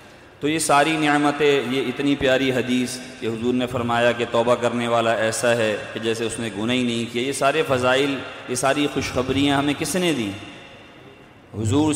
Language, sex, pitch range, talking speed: Urdu, male, 110-130 Hz, 180 wpm